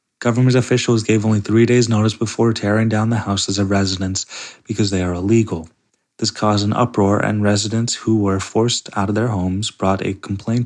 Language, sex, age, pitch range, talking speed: English, male, 20-39, 100-115 Hz, 190 wpm